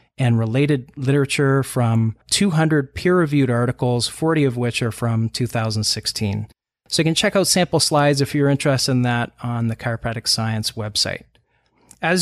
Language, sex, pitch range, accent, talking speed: English, male, 120-150 Hz, American, 150 wpm